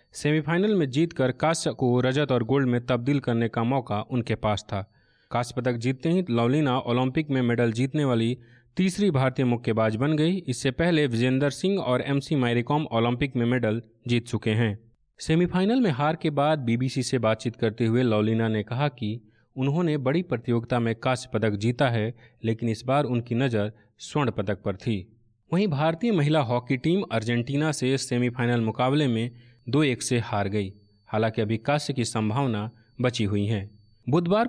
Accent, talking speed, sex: native, 170 wpm, male